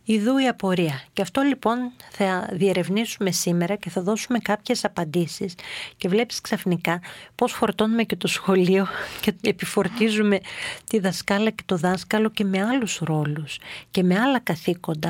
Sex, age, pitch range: female, 40-59, 180-225 Hz